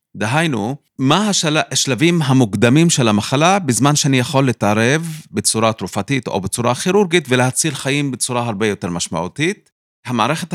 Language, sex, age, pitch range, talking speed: Hebrew, male, 30-49, 105-140 Hz, 125 wpm